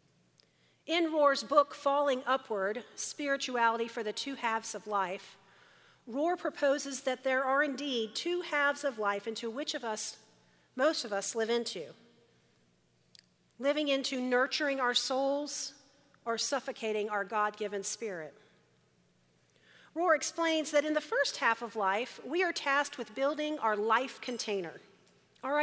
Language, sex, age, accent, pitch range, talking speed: English, female, 40-59, American, 225-295 Hz, 140 wpm